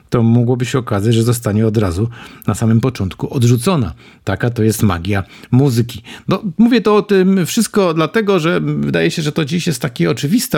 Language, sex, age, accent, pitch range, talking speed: Polish, male, 50-69, native, 120-150 Hz, 185 wpm